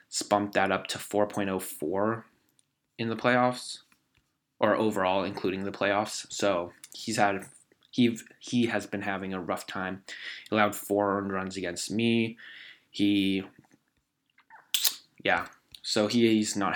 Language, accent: English, American